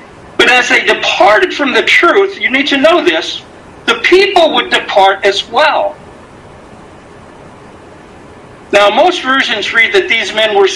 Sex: male